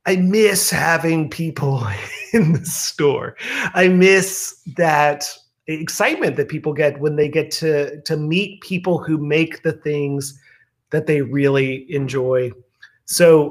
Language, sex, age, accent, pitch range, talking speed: English, male, 30-49, American, 140-170 Hz, 135 wpm